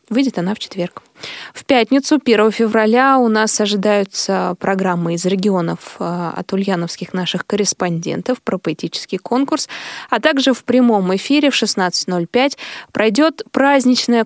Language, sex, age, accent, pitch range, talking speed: Russian, female, 20-39, native, 190-245 Hz, 125 wpm